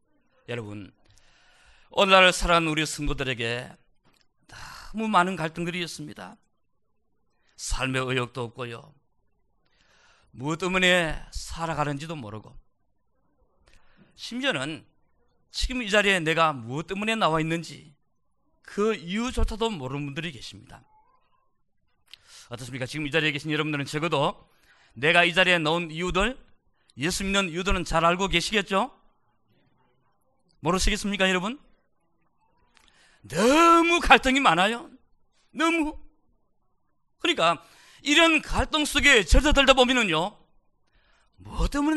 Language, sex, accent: Korean, male, native